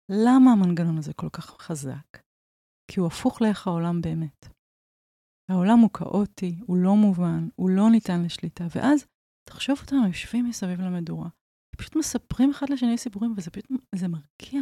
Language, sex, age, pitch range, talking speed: Hebrew, female, 30-49, 180-250 Hz, 150 wpm